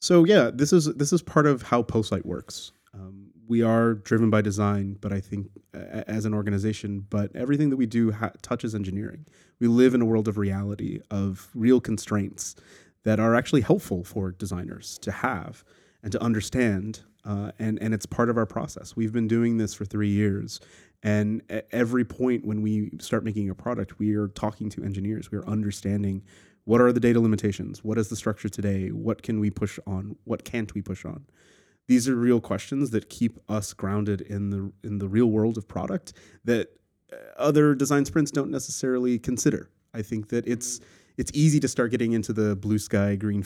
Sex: male